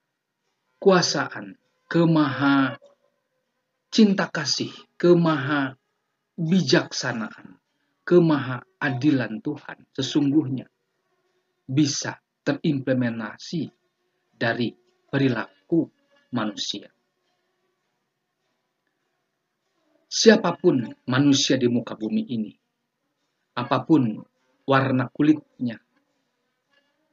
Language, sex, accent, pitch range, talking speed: Indonesian, male, native, 130-195 Hz, 55 wpm